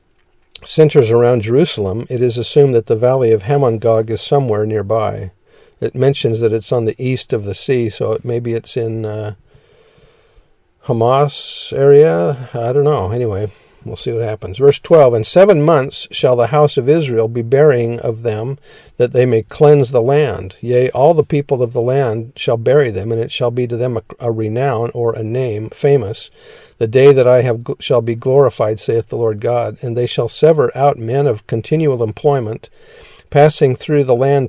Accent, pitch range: American, 115-140 Hz